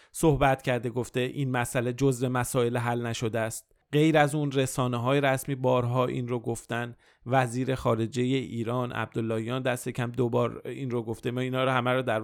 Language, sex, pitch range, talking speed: Persian, male, 115-130 Hz, 175 wpm